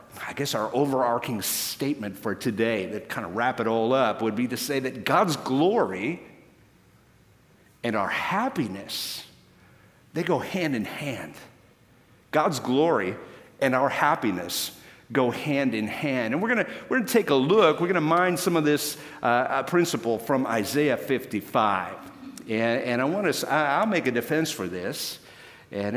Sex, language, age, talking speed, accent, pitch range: male, English, 50-69, 160 wpm, American, 115-150 Hz